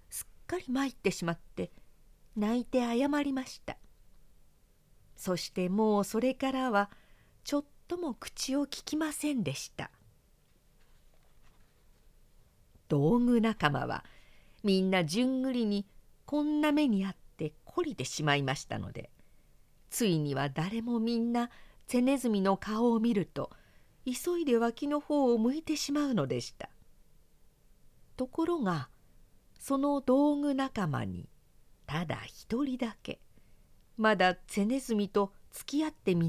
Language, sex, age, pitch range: Japanese, female, 40-59, 185-265 Hz